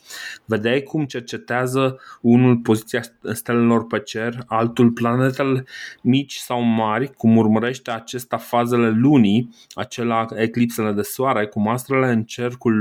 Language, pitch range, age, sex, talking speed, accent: Romanian, 110-130 Hz, 20-39, male, 120 wpm, native